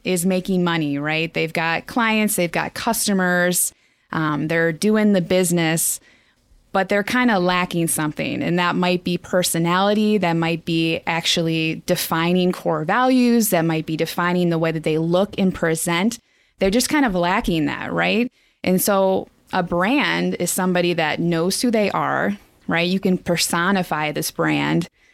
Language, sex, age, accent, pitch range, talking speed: English, female, 20-39, American, 165-195 Hz, 160 wpm